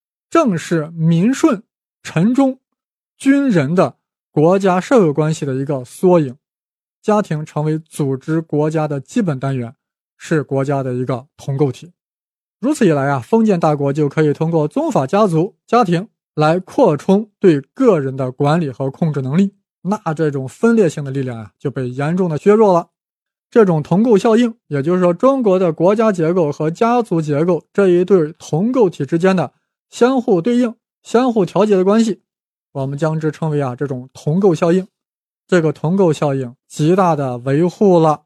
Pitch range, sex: 145-190 Hz, male